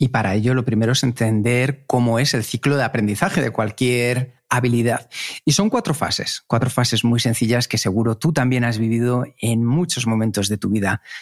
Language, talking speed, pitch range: Spanish, 195 wpm, 110-145 Hz